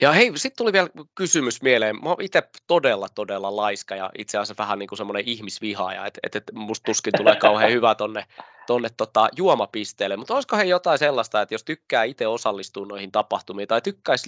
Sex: male